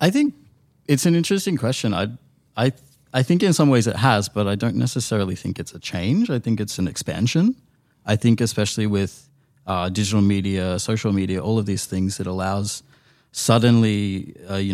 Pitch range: 95-130 Hz